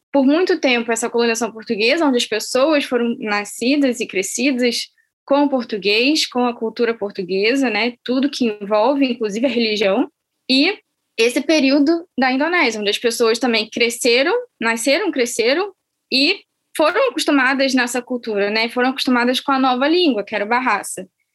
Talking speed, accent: 155 wpm, Brazilian